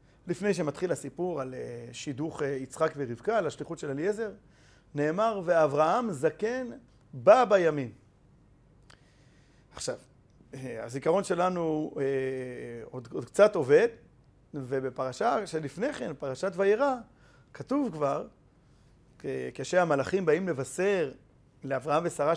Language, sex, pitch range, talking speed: Hebrew, male, 140-220 Hz, 95 wpm